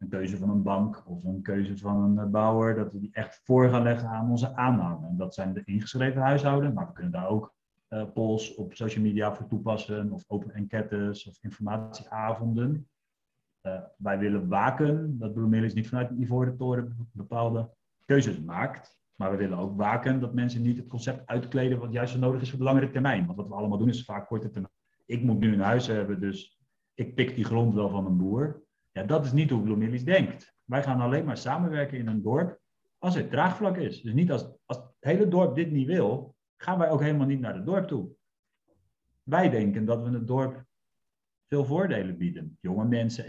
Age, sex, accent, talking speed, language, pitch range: 40-59, male, Dutch, 210 wpm, Dutch, 110-135 Hz